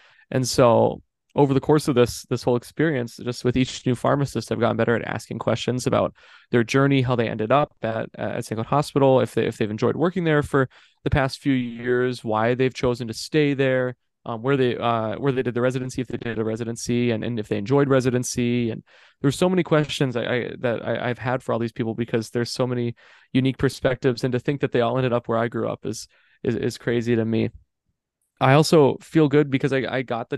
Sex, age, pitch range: male, 20-39, 115-135 Hz